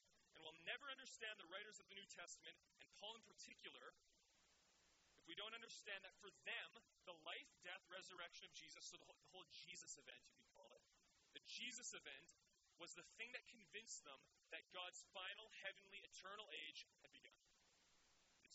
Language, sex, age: English, male, 30-49